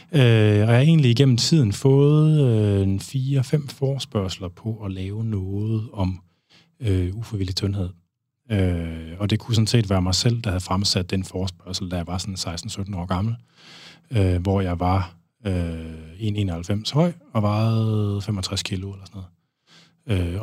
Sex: male